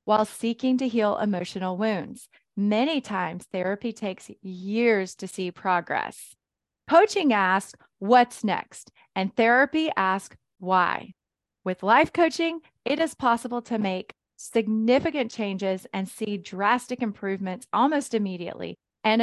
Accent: American